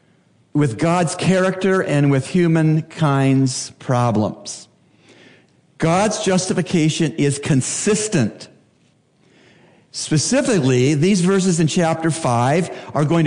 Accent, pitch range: American, 145-190 Hz